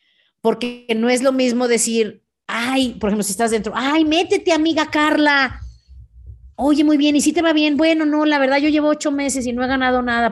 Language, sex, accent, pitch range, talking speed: Spanish, female, Mexican, 220-300 Hz, 215 wpm